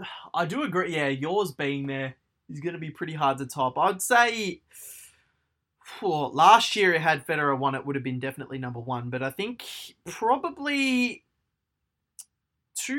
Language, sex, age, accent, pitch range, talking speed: English, male, 20-39, Australian, 130-165 Hz, 165 wpm